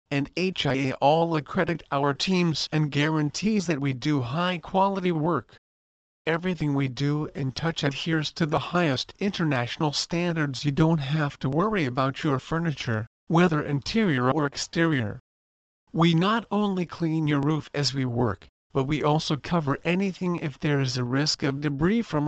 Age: 50-69